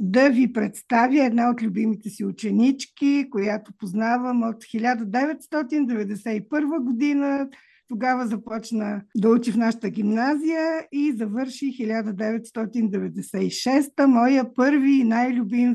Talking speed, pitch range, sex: 105 wpm, 225-270 Hz, female